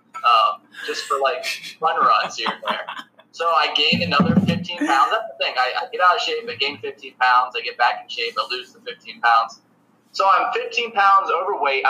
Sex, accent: male, American